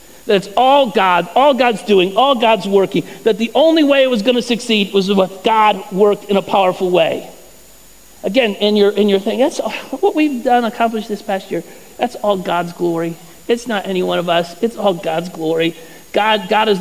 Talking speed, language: 210 wpm, English